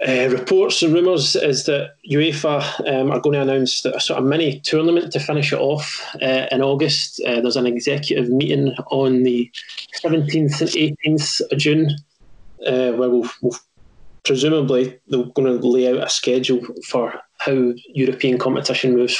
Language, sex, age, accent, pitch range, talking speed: English, male, 20-39, British, 125-150 Hz, 160 wpm